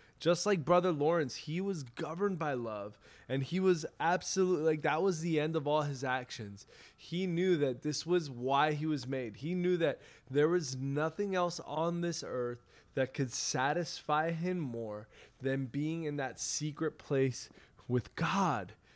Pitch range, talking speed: 125-160 Hz, 170 wpm